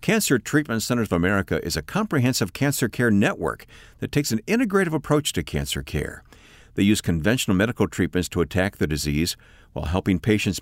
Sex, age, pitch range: male, 50-69, 85-135 Hz